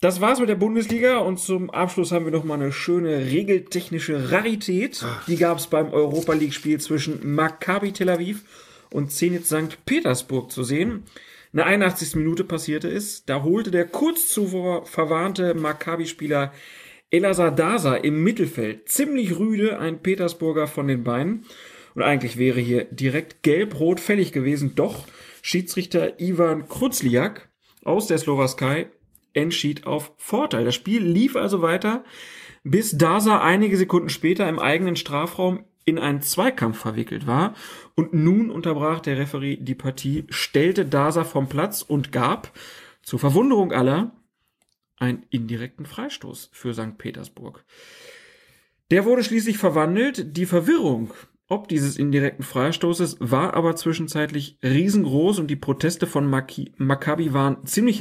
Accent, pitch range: German, 145-185 Hz